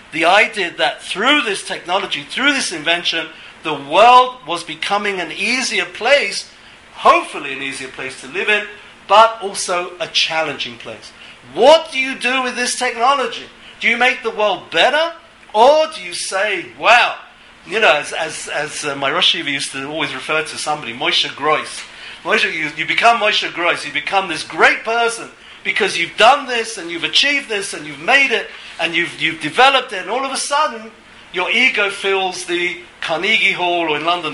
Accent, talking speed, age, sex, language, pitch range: British, 180 wpm, 50-69, male, English, 160-235 Hz